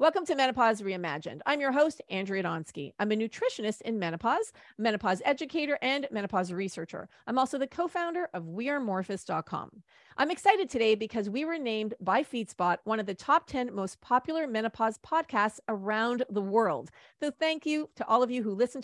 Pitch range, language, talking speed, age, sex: 195-275 Hz, English, 180 wpm, 40-59, female